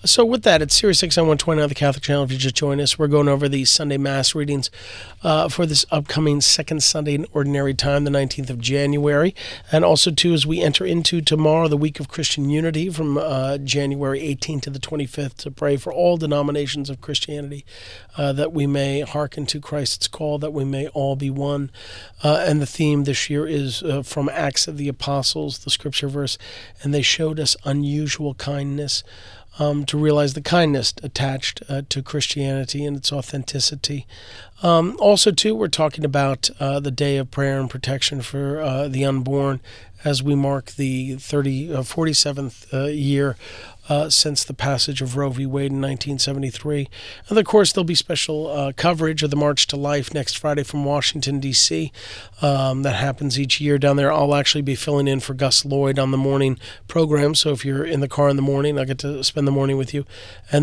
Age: 40-59